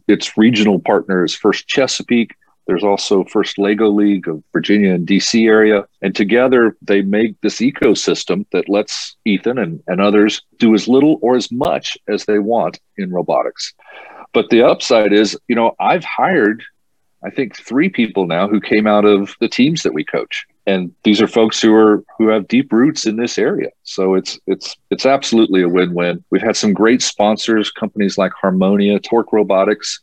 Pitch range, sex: 95-115 Hz, male